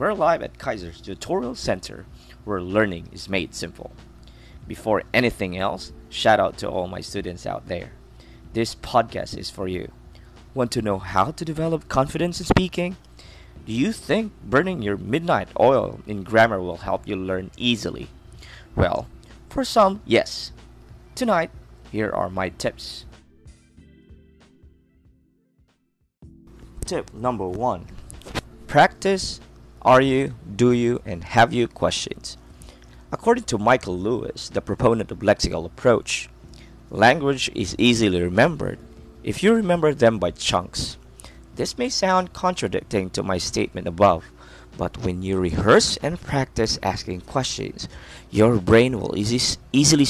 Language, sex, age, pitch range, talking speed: English, male, 20-39, 90-135 Hz, 130 wpm